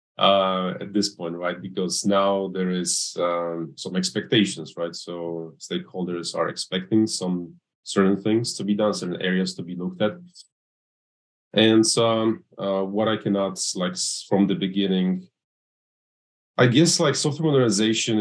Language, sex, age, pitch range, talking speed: English, male, 30-49, 90-110 Hz, 150 wpm